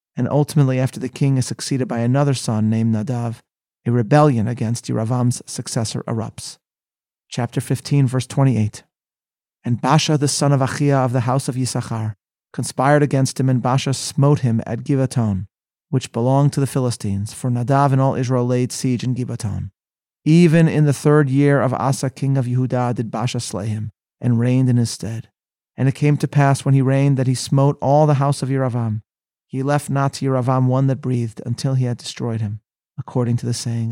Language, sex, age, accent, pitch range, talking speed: English, male, 40-59, American, 115-135 Hz, 190 wpm